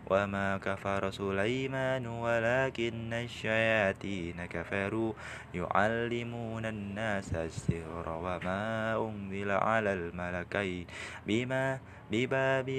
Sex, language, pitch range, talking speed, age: male, Indonesian, 95-120 Hz, 50 wpm, 20-39